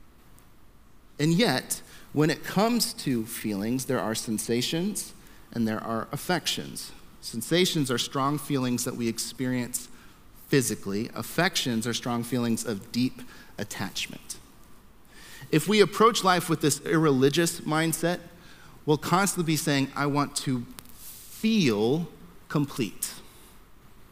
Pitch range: 125-175 Hz